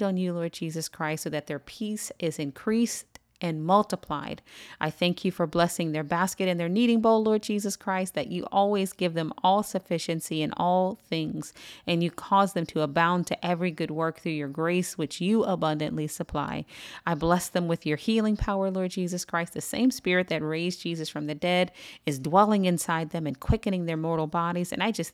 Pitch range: 160-195 Hz